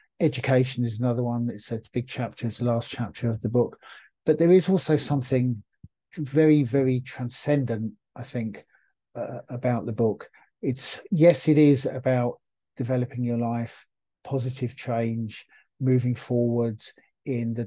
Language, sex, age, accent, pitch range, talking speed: English, male, 50-69, British, 115-130 Hz, 145 wpm